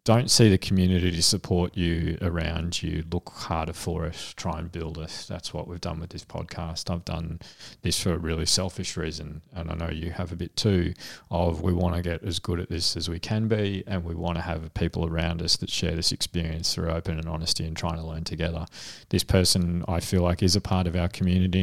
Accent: Australian